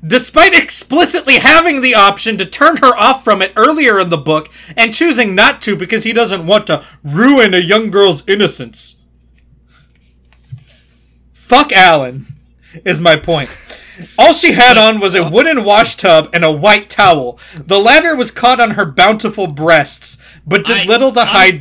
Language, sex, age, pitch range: English, male, 30-49, 145-235 Hz